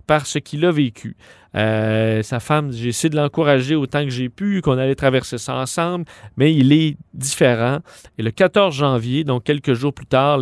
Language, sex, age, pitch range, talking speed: French, male, 40-59, 120-155 Hz, 195 wpm